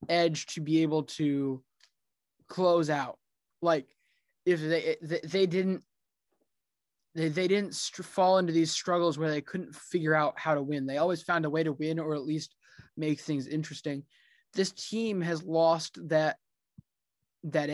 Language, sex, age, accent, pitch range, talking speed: English, male, 20-39, American, 155-195 Hz, 160 wpm